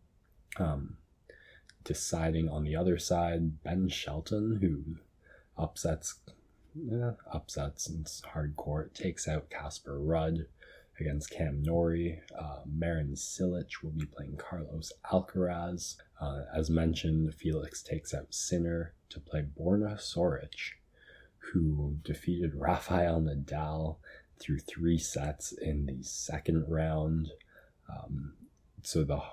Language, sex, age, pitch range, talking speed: English, male, 20-39, 75-85 Hz, 110 wpm